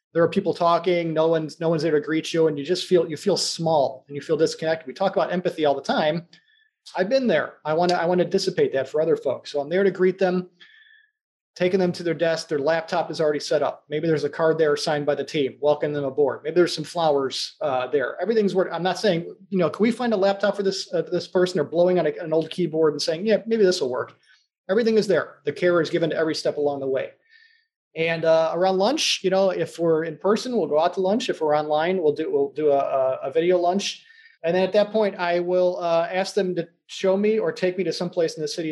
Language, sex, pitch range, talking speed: English, male, 155-195 Hz, 265 wpm